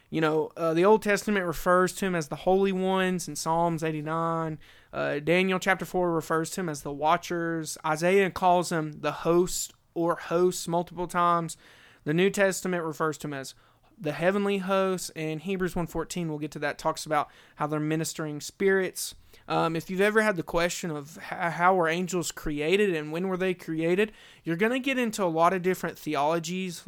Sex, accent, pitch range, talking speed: male, American, 155-190 Hz, 190 wpm